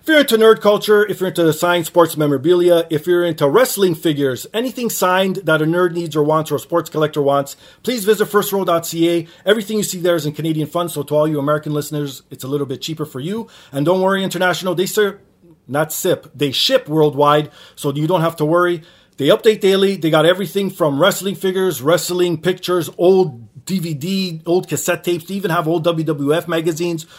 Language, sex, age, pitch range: English, male, 30-49, 150-185 Hz